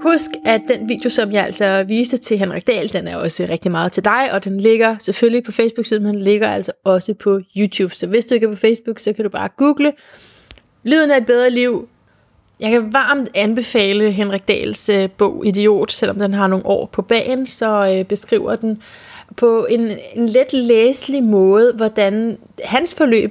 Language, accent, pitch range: Danish, native, 205-245 Hz